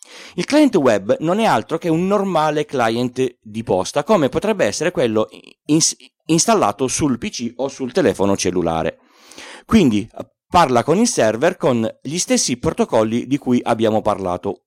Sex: male